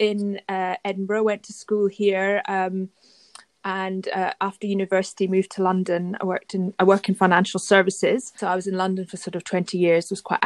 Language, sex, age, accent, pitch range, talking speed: English, female, 30-49, British, 185-205 Hz, 200 wpm